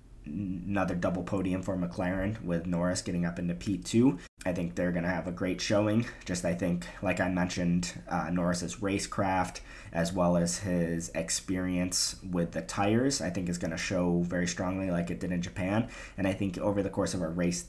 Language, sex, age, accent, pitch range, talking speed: English, male, 20-39, American, 85-100 Hz, 200 wpm